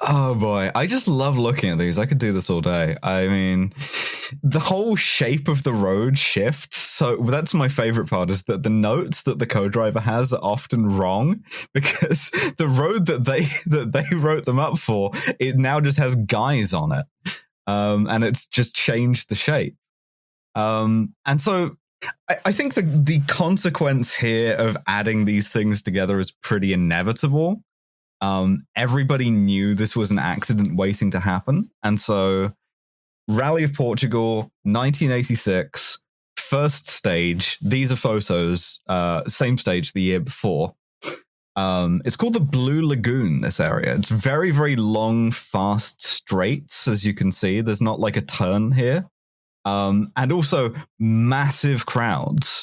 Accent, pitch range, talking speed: British, 100-145 Hz, 155 wpm